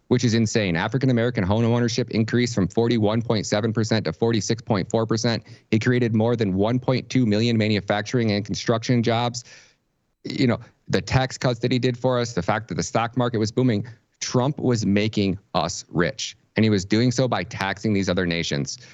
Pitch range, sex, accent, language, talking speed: 100-125 Hz, male, American, English, 175 wpm